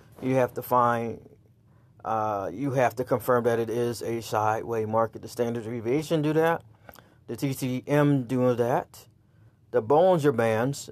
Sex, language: male, English